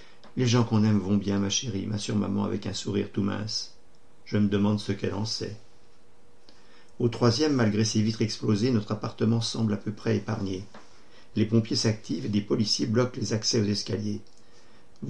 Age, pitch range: 50-69, 105-115 Hz